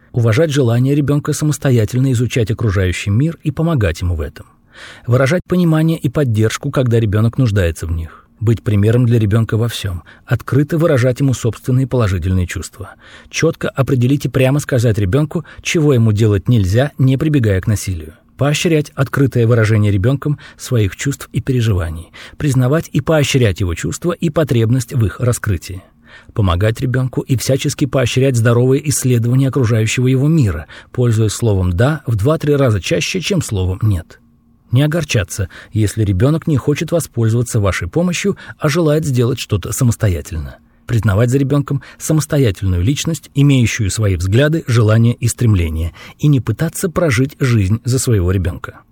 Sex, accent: male, native